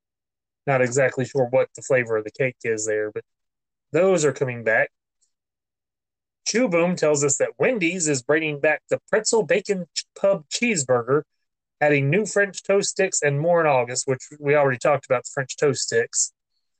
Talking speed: 175 wpm